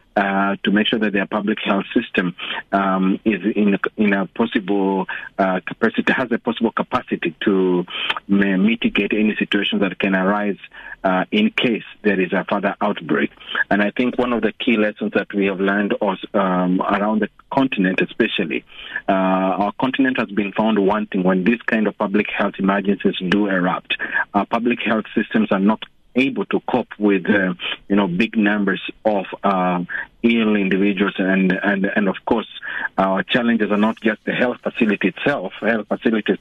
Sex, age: male, 40-59